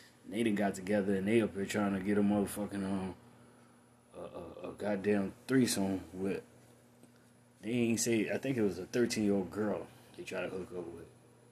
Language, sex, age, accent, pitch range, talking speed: English, male, 20-39, American, 95-120 Hz, 195 wpm